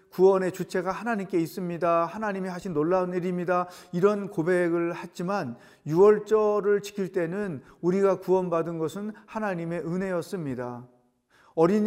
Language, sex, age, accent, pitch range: Korean, male, 40-59, native, 155-200 Hz